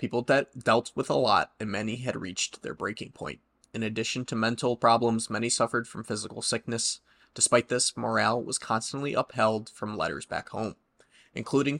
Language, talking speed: English, 170 wpm